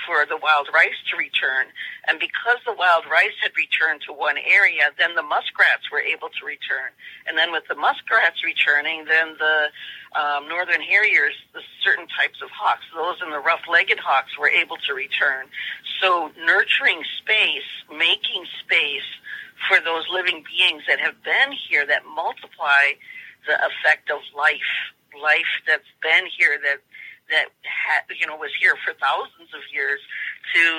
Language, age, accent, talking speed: English, 50-69, American, 160 wpm